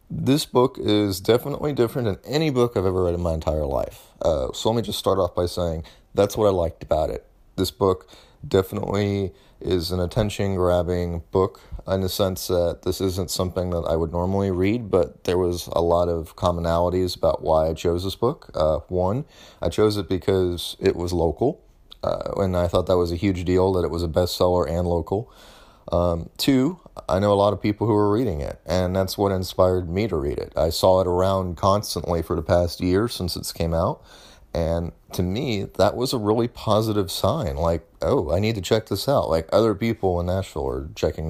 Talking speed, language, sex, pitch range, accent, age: 210 wpm, English, male, 85-105 Hz, American, 30-49